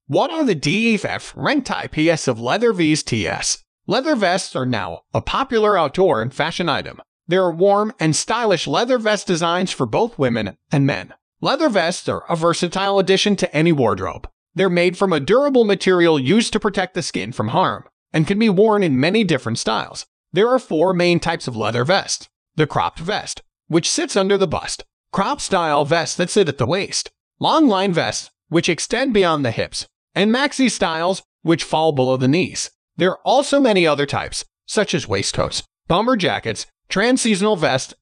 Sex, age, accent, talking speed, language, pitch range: male, 30-49, American, 180 wpm, English, 150-210 Hz